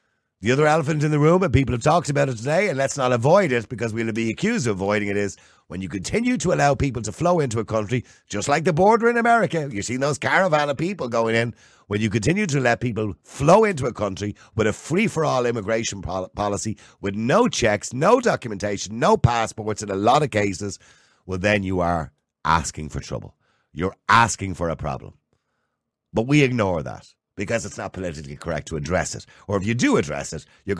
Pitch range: 95-135 Hz